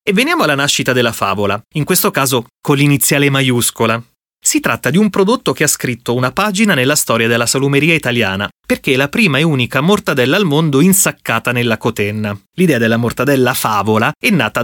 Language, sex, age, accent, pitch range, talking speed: Italian, male, 30-49, native, 115-155 Hz, 185 wpm